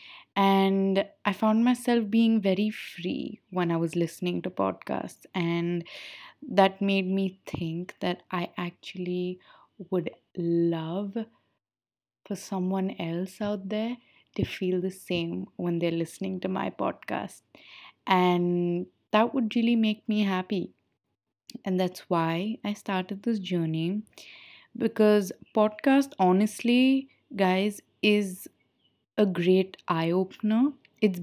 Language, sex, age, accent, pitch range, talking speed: English, female, 20-39, Indian, 175-215 Hz, 120 wpm